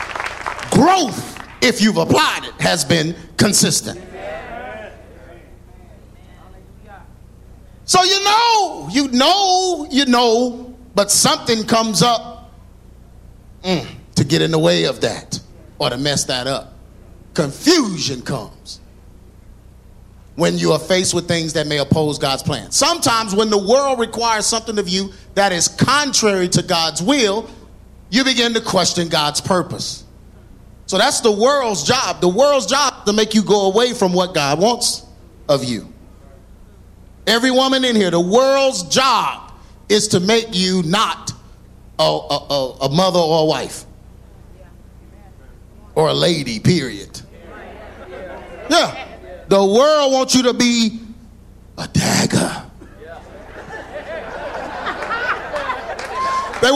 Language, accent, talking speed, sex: English, American, 120 wpm, male